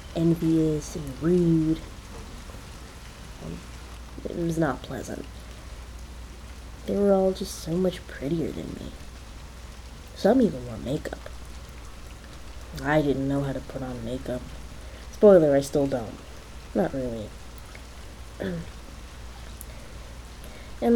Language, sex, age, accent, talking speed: English, female, 20-39, American, 105 wpm